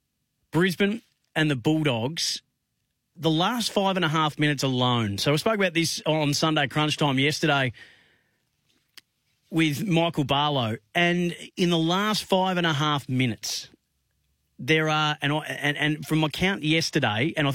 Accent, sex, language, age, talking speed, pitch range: Australian, male, English, 30-49, 155 wpm, 135-170 Hz